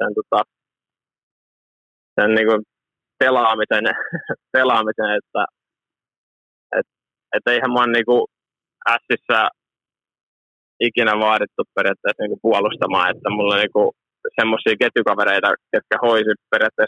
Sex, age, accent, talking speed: male, 20-39, native, 90 wpm